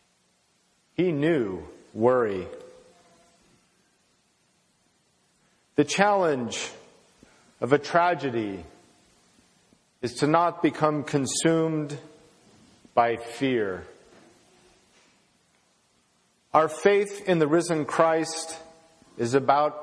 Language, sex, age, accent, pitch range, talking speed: English, male, 50-69, American, 120-165 Hz, 70 wpm